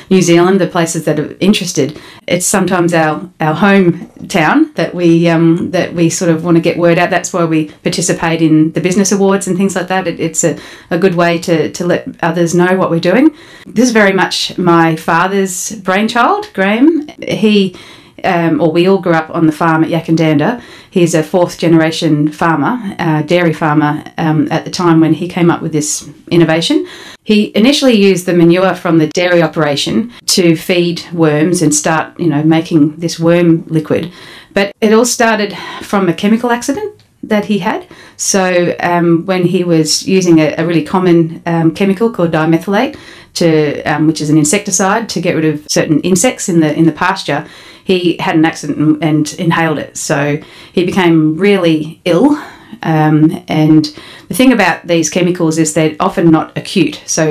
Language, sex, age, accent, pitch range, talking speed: English, female, 30-49, Australian, 160-190 Hz, 185 wpm